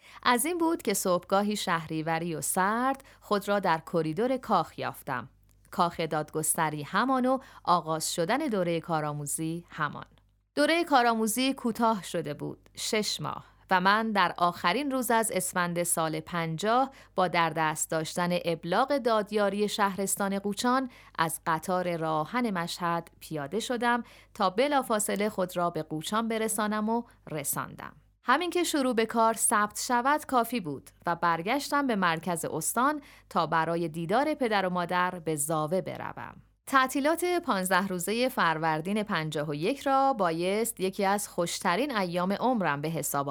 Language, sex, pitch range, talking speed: Persian, female, 160-235 Hz, 140 wpm